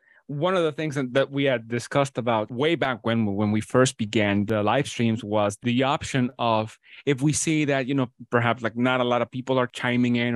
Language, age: English, 30-49